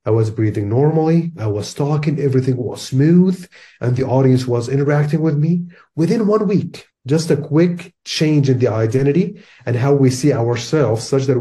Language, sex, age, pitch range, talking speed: English, male, 30-49, 115-145 Hz, 180 wpm